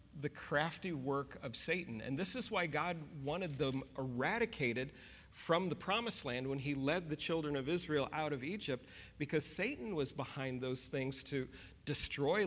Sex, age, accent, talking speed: male, 40-59, American, 170 wpm